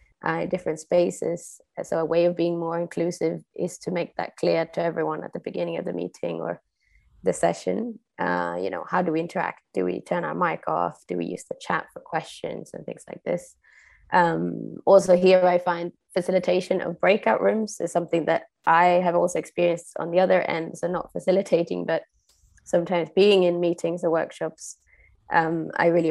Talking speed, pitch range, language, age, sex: 190 wpm, 165-185 Hz, English, 20-39, female